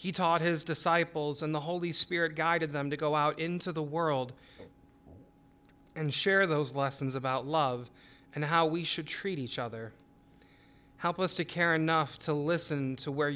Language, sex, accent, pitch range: English, male, American, 140-170 Hz